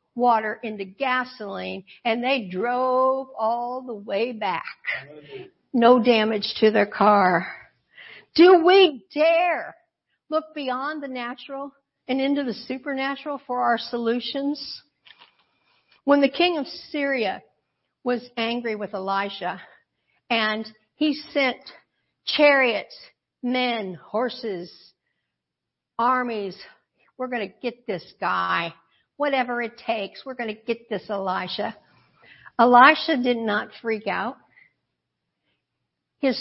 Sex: female